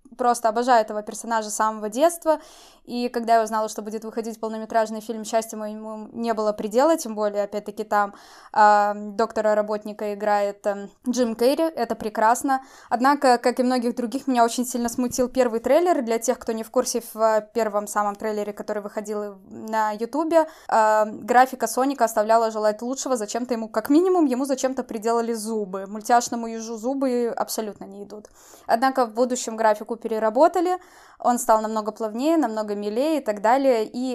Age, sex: 20-39, female